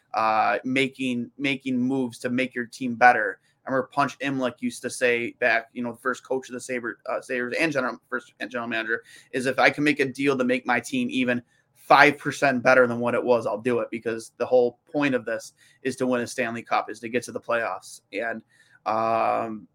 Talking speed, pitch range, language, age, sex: 220 wpm, 120-140 Hz, English, 20-39, male